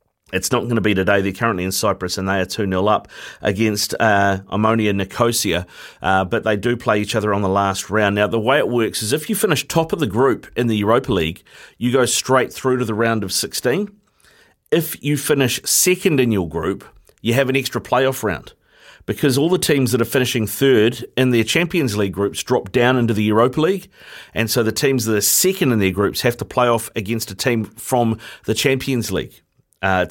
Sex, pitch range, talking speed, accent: male, 105-125 Hz, 220 wpm, Australian